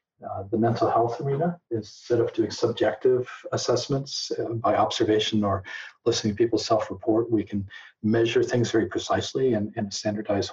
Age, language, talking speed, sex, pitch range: 40-59, English, 160 wpm, male, 110-125 Hz